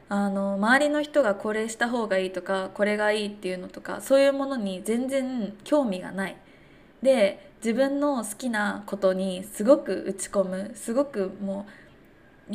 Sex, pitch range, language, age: female, 200-260 Hz, Japanese, 20-39